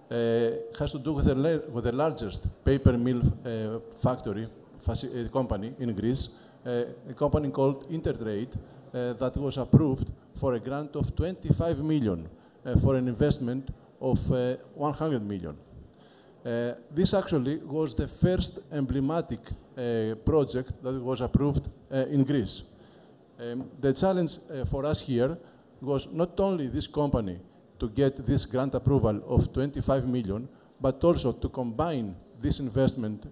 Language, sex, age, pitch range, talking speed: English, male, 50-69, 120-145 Hz, 145 wpm